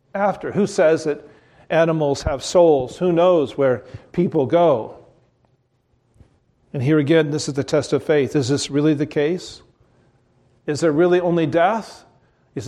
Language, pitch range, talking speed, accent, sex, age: English, 130-180 Hz, 150 wpm, American, male, 40-59